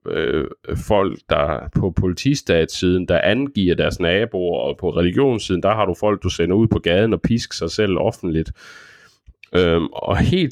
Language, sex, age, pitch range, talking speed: Danish, male, 30-49, 90-115 Hz, 165 wpm